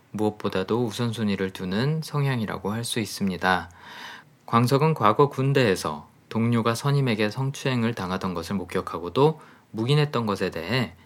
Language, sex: Korean, male